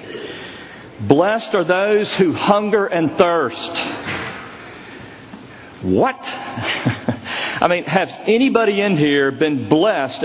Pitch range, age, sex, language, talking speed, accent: 150-215 Hz, 50-69, male, English, 95 wpm, American